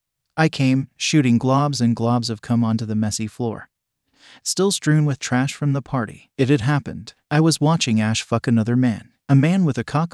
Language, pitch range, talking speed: English, 115-140 Hz, 200 wpm